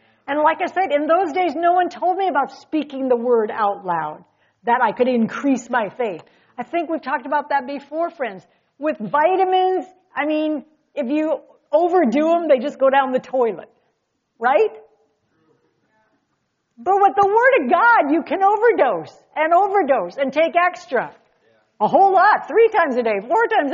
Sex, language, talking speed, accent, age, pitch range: female, English, 175 wpm, American, 50-69, 220-325 Hz